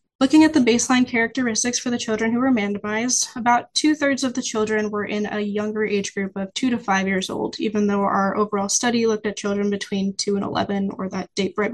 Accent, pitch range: American, 205-245 Hz